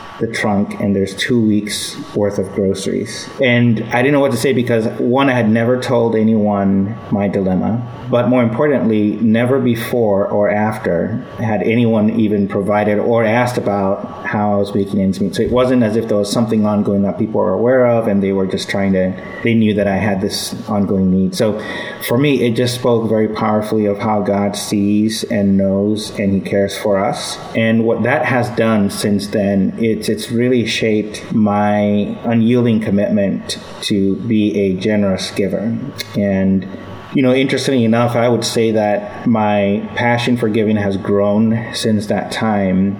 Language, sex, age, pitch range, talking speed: English, male, 30-49, 100-115 Hz, 180 wpm